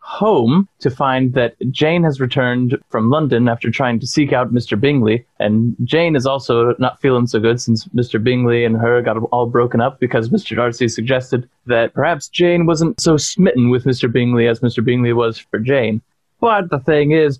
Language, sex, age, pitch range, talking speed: English, male, 20-39, 120-140 Hz, 195 wpm